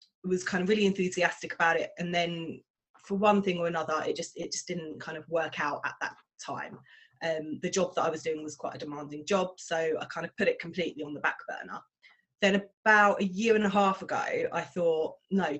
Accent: British